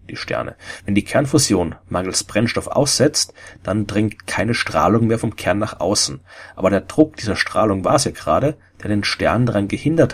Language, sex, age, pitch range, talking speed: German, male, 40-59, 95-130 Hz, 185 wpm